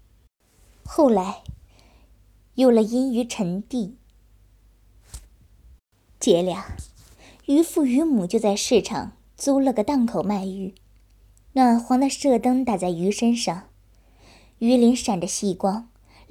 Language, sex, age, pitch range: Chinese, male, 20-39, 170-250 Hz